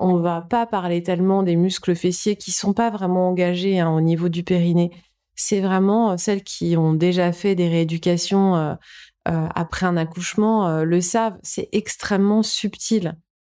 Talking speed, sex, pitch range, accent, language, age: 180 wpm, female, 175-205 Hz, French, French, 30-49